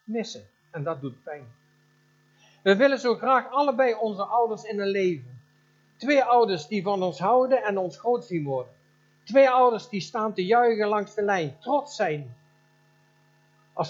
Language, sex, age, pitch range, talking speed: Dutch, male, 60-79, 160-200 Hz, 165 wpm